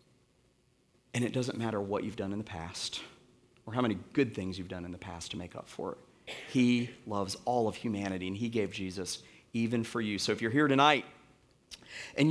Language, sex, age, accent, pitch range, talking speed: English, male, 40-59, American, 100-145 Hz, 210 wpm